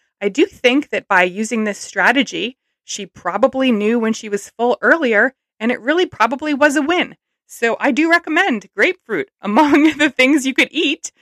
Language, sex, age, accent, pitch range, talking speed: English, female, 30-49, American, 190-280 Hz, 180 wpm